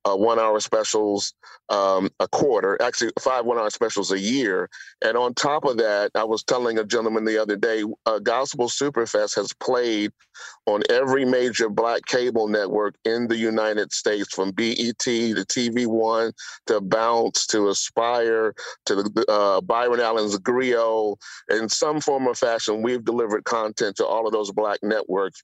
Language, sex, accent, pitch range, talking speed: English, male, American, 105-125 Hz, 160 wpm